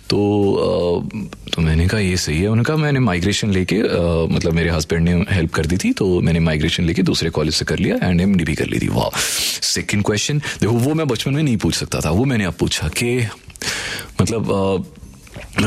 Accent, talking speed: native, 210 wpm